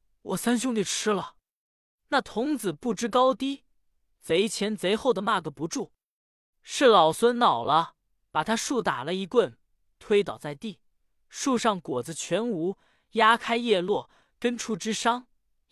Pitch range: 170-235 Hz